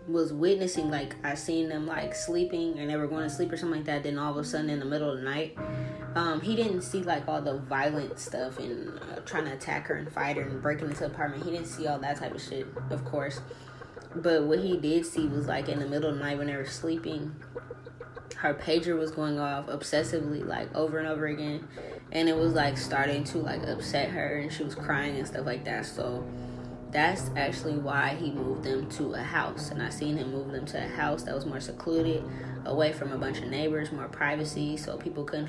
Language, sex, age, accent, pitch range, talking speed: English, female, 10-29, American, 135-160 Hz, 240 wpm